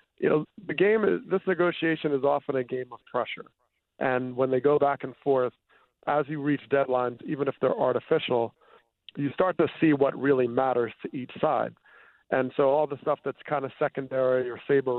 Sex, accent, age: male, American, 40-59